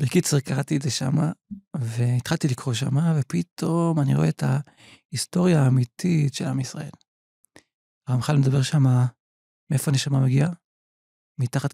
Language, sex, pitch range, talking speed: Hebrew, male, 140-175 Hz, 125 wpm